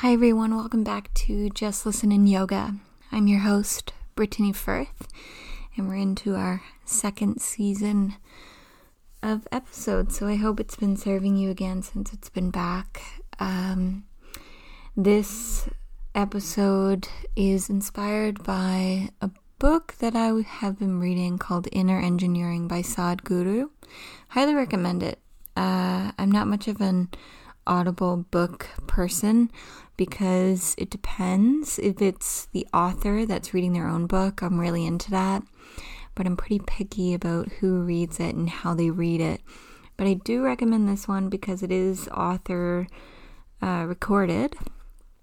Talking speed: 140 wpm